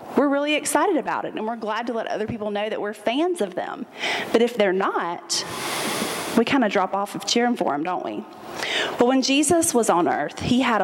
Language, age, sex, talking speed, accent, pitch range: English, 30-49, female, 225 wpm, American, 215-275 Hz